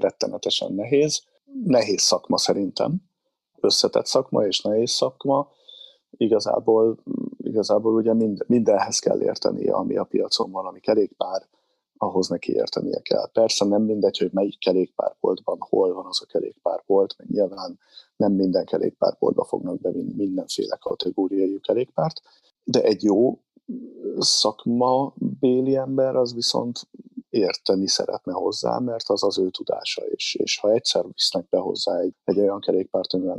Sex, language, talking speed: male, Hungarian, 135 wpm